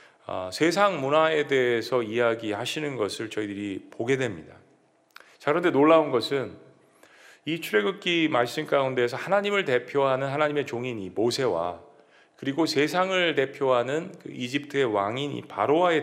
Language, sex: Korean, male